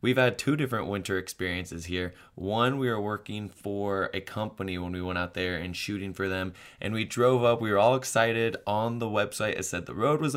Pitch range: 95-120 Hz